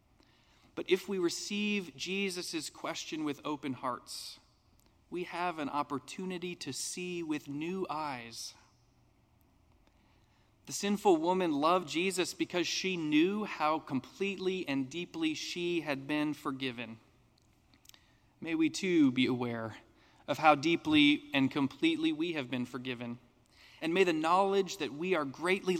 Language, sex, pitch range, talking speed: English, male, 130-180 Hz, 130 wpm